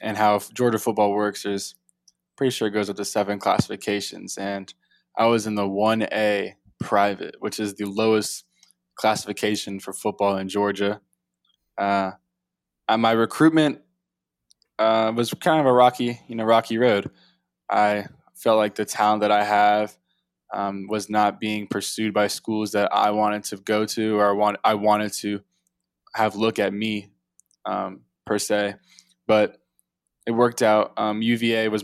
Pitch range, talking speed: 100-110 Hz, 160 wpm